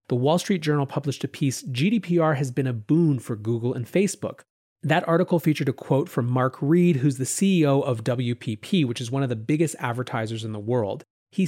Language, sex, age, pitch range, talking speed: English, male, 30-49, 130-170 Hz, 210 wpm